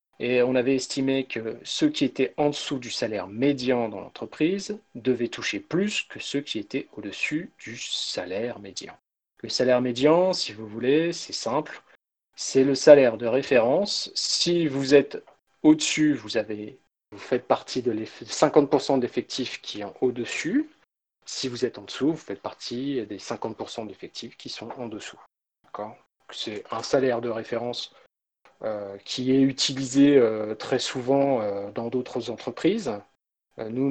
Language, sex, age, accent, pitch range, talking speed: French, male, 40-59, French, 115-140 Hz, 155 wpm